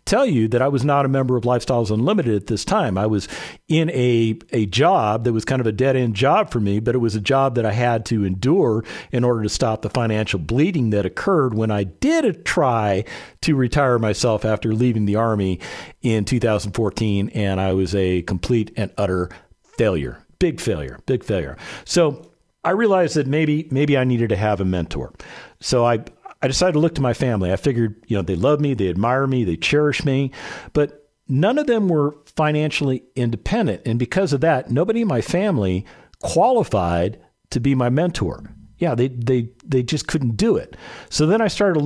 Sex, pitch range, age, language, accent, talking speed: male, 110-145 Hz, 50-69, English, American, 200 wpm